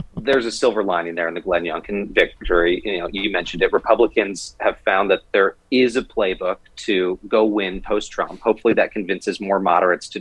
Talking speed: 190 wpm